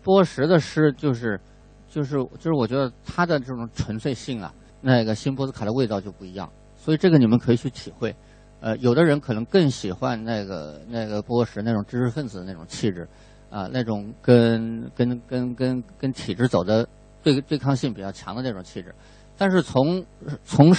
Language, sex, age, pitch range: Chinese, male, 50-69, 110-145 Hz